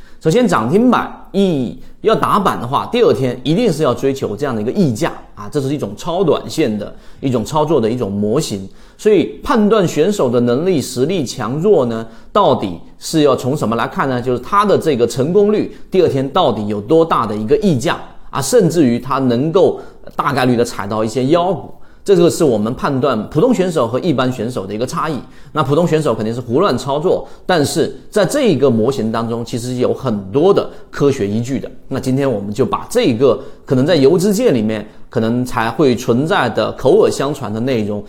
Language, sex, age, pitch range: Chinese, male, 30-49, 115-155 Hz